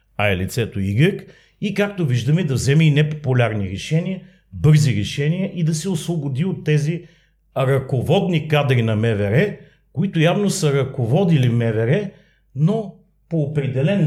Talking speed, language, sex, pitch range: 135 wpm, Bulgarian, male, 120-165 Hz